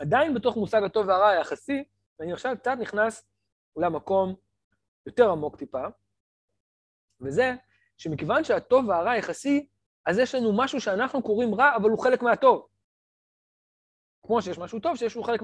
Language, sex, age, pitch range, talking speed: Hebrew, male, 20-39, 155-255 Hz, 145 wpm